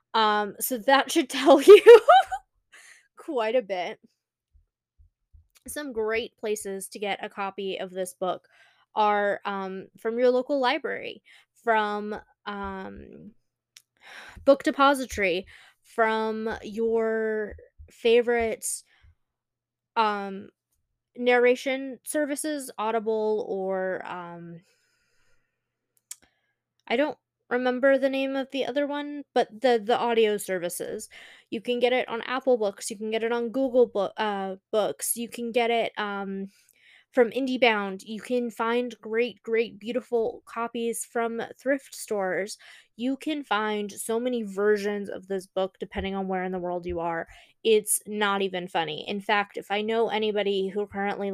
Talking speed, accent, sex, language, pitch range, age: 130 wpm, American, female, English, 200-245 Hz, 20-39